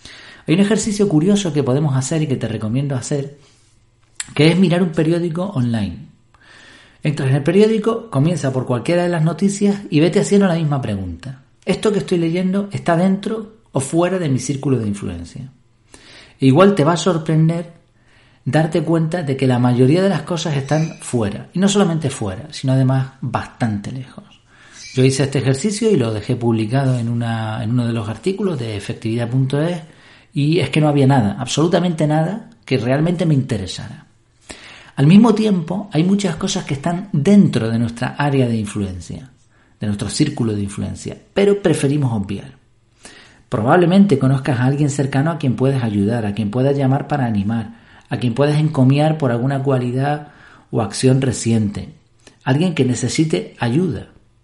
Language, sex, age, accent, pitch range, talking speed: Spanish, male, 40-59, Argentinian, 120-170 Hz, 165 wpm